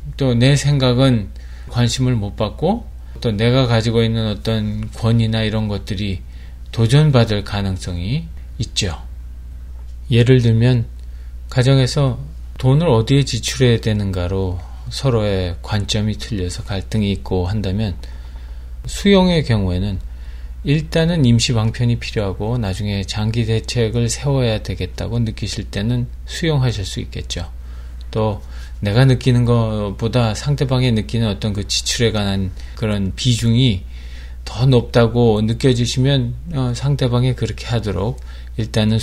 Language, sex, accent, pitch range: Korean, male, native, 90-120 Hz